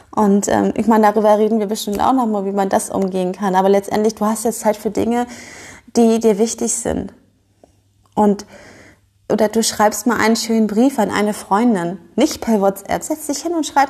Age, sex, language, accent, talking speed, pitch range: 30-49, female, German, German, 205 wpm, 195-230 Hz